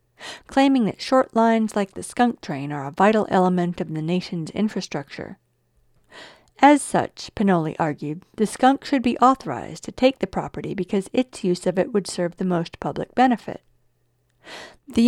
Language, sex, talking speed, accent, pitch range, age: English, female, 165 wpm, American, 175-235 Hz, 50-69